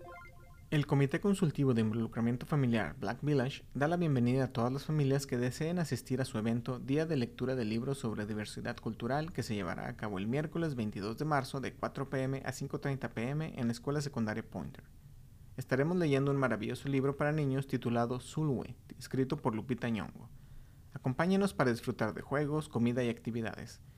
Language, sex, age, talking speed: English, male, 30-49, 180 wpm